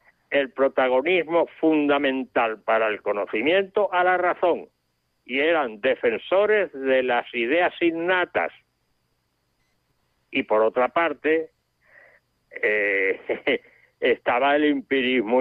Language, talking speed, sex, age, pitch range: Spanish, 95 wpm, male, 60-79, 130-195 Hz